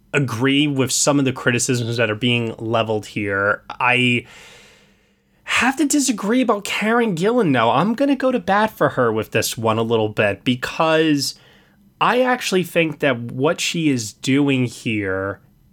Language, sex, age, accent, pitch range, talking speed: English, male, 20-39, American, 120-150 Hz, 160 wpm